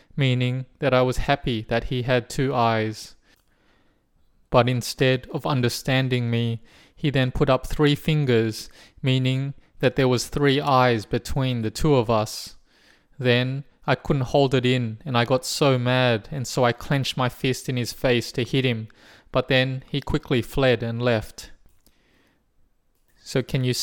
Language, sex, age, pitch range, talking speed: English, male, 20-39, 115-130 Hz, 165 wpm